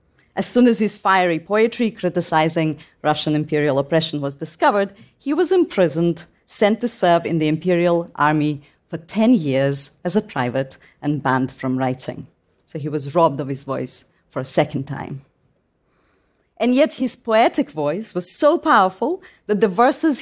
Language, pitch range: English, 145-205 Hz